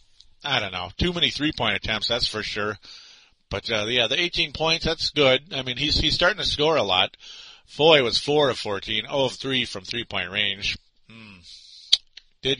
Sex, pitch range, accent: male, 105-140 Hz, American